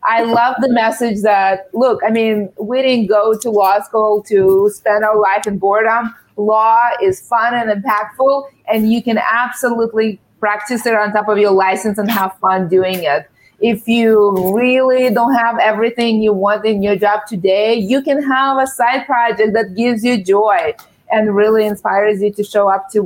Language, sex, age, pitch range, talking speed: English, female, 30-49, 210-250 Hz, 185 wpm